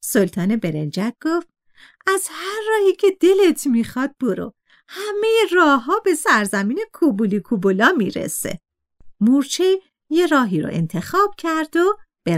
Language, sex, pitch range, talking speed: Persian, female, 255-390 Hz, 120 wpm